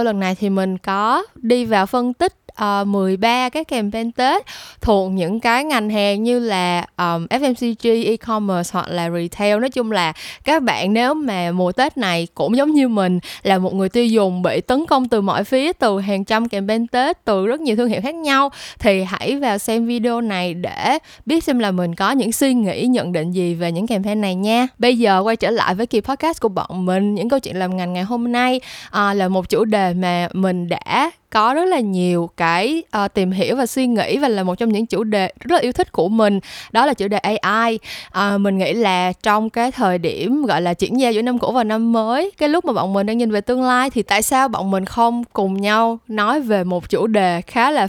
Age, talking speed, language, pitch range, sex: 10-29, 230 wpm, Vietnamese, 185-240 Hz, female